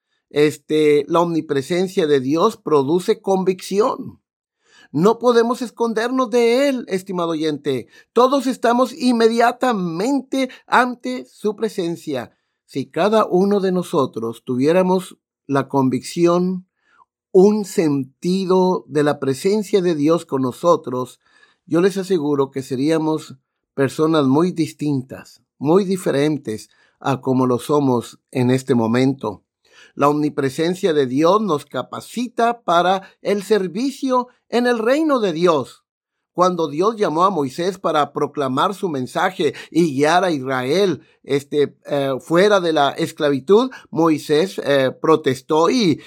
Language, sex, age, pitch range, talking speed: Spanish, male, 50-69, 140-205 Hz, 115 wpm